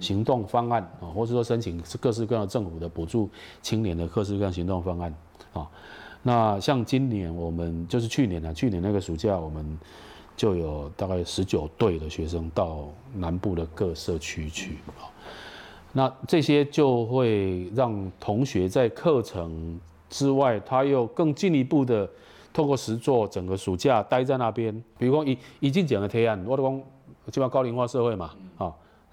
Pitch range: 90-130 Hz